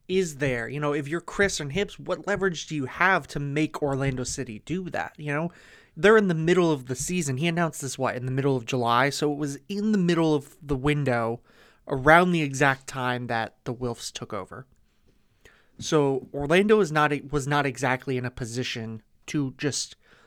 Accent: American